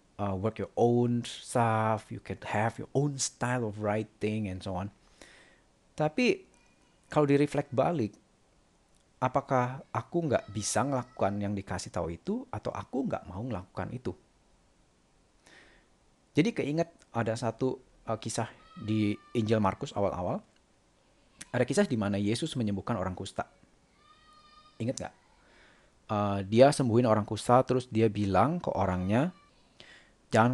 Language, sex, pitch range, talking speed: Indonesian, male, 100-125 Hz, 130 wpm